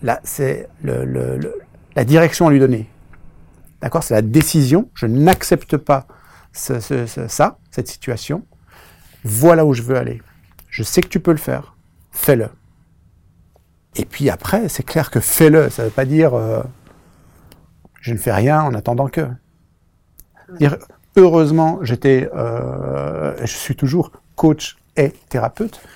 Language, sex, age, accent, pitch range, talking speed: French, male, 50-69, French, 110-155 Hz, 155 wpm